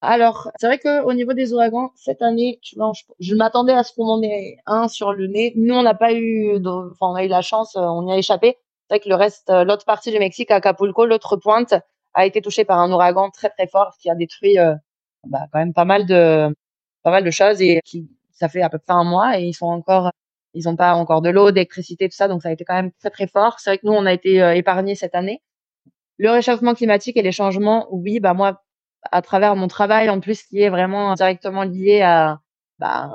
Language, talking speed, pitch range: French, 250 wpm, 185-220 Hz